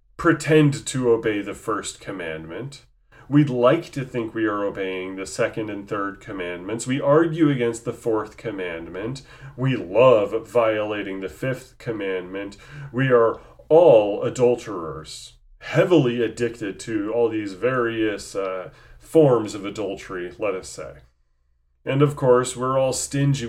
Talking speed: 135 wpm